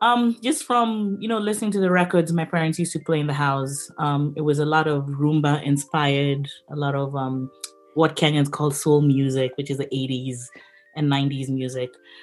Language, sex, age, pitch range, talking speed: Swahili, female, 20-39, 135-180 Hz, 200 wpm